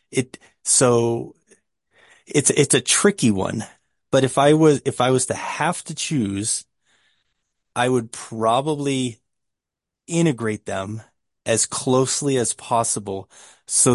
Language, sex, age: English, male, 30-49